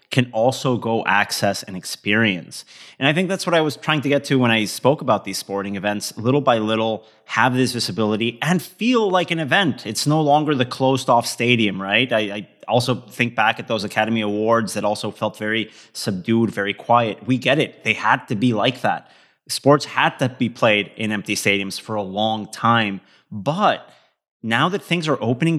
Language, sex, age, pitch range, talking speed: English, male, 30-49, 110-130 Hz, 200 wpm